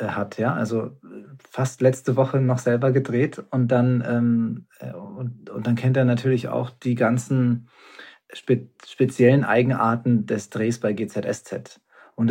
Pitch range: 115-125 Hz